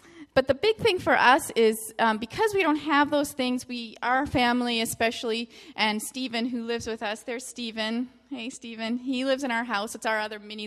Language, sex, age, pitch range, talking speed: English, female, 30-49, 215-285 Hz, 210 wpm